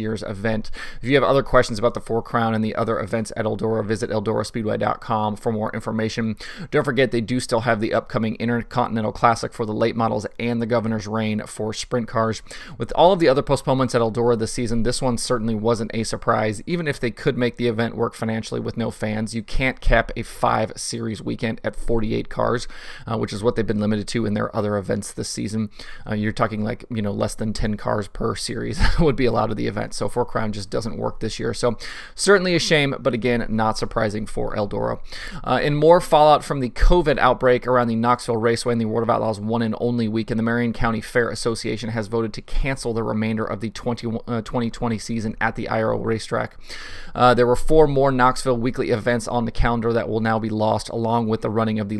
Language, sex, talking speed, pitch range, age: English, male, 225 wpm, 110-120 Hz, 30-49